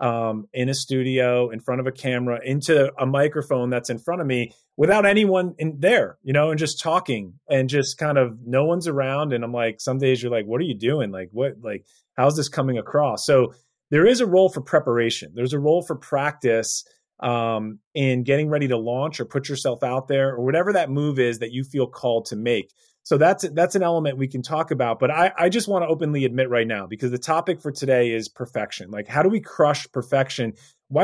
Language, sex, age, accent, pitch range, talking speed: English, male, 30-49, American, 120-150 Hz, 230 wpm